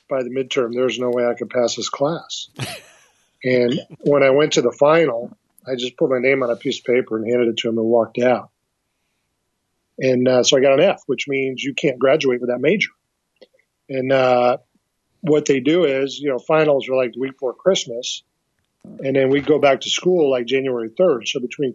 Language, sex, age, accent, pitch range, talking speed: English, male, 40-59, American, 125-145 Hz, 215 wpm